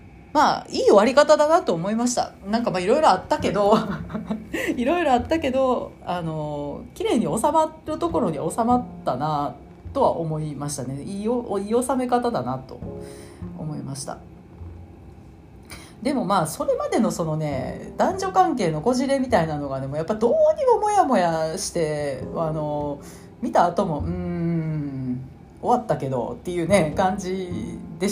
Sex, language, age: female, Japanese, 40-59